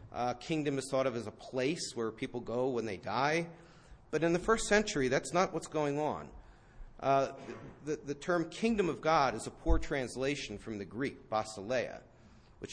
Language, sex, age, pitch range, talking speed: English, male, 40-59, 120-165 Hz, 190 wpm